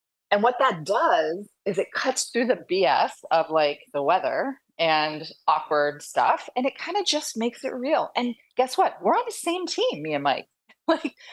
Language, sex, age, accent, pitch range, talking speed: English, female, 30-49, American, 165-255 Hz, 195 wpm